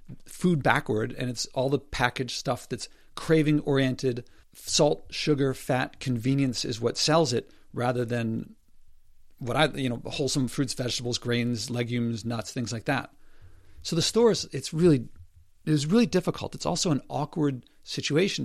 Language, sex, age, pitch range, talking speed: English, male, 50-69, 120-150 Hz, 150 wpm